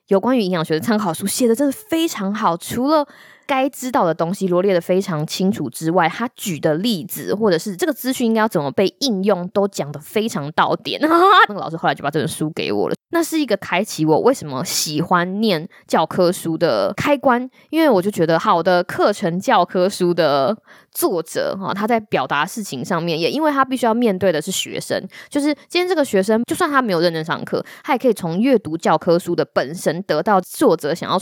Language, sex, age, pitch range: Chinese, female, 20-39, 170-250 Hz